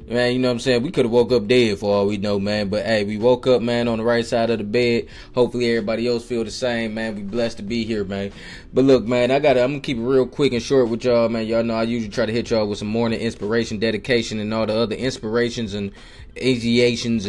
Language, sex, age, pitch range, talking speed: English, male, 20-39, 105-125 Hz, 280 wpm